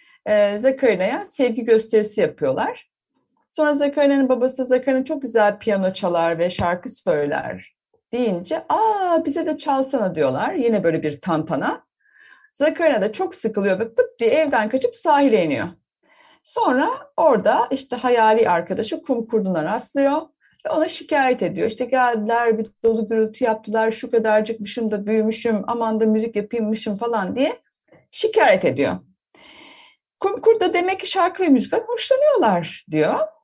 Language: Turkish